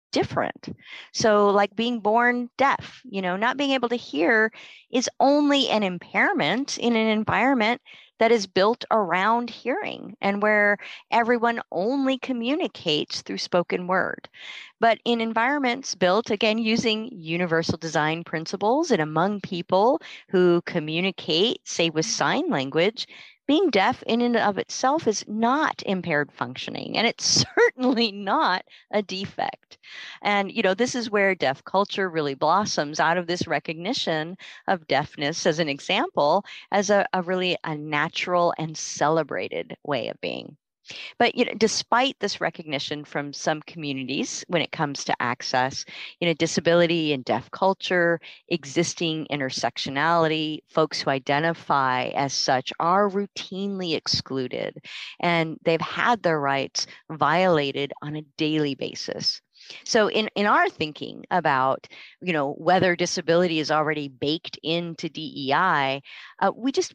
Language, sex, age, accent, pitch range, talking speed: English, female, 40-59, American, 155-225 Hz, 140 wpm